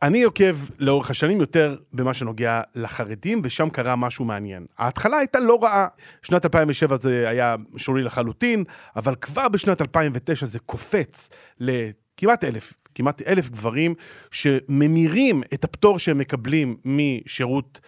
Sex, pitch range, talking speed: male, 130-165 Hz, 130 wpm